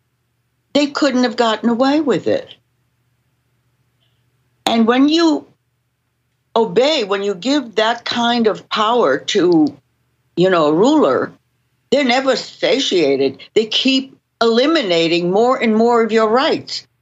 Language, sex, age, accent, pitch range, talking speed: English, female, 60-79, American, 125-215 Hz, 125 wpm